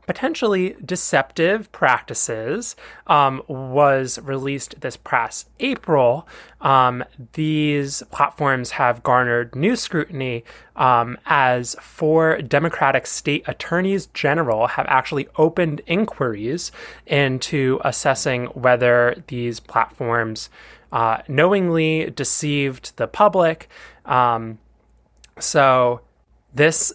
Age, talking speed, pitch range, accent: 20-39, 90 wpm, 125-155 Hz, American